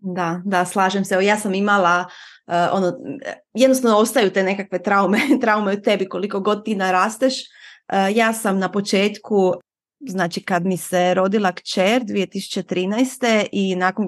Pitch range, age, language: 185-225 Hz, 20-39, Croatian